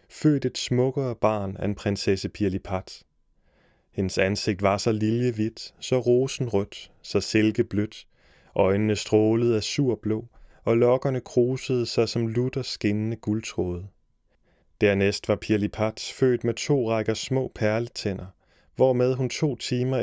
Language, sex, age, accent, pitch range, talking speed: Danish, male, 30-49, native, 100-120 Hz, 125 wpm